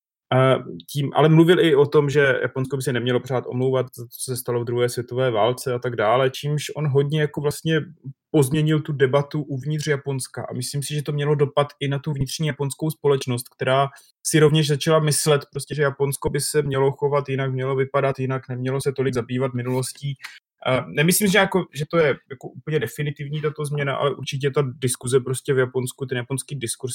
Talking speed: 200 wpm